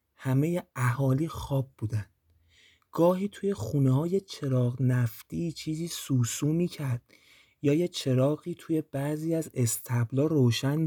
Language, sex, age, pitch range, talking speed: Persian, male, 30-49, 120-155 Hz, 125 wpm